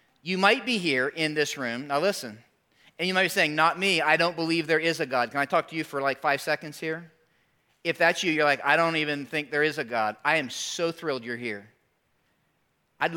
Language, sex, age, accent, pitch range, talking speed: English, male, 40-59, American, 140-180 Hz, 240 wpm